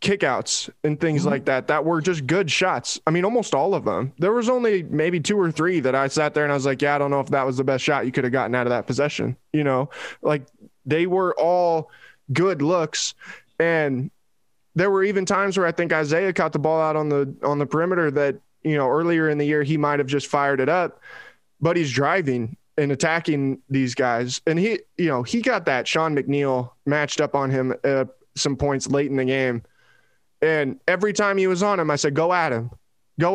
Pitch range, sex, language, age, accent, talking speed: 140-175 Hz, male, English, 20-39, American, 230 wpm